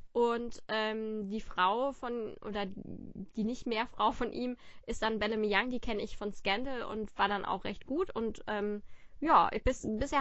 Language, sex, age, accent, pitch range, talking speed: German, female, 20-39, German, 205-235 Hz, 190 wpm